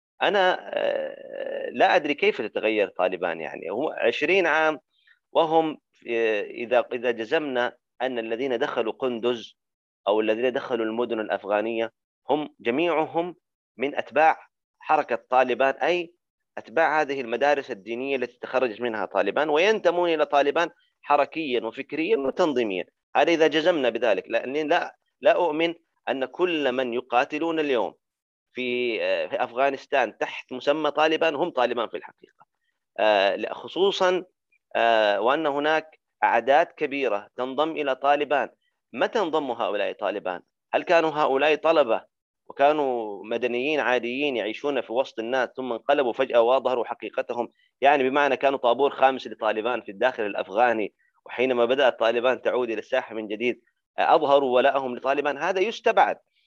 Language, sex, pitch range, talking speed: Arabic, male, 120-165 Hz, 125 wpm